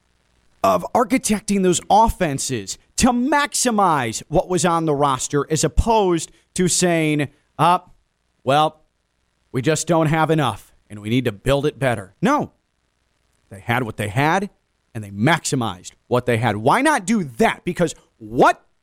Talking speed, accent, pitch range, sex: 150 wpm, American, 120-200 Hz, male